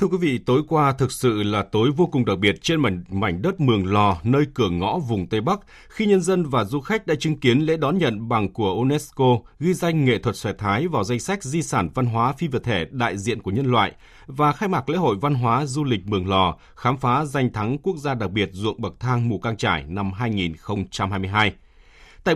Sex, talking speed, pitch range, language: male, 235 wpm, 100-140 Hz, Vietnamese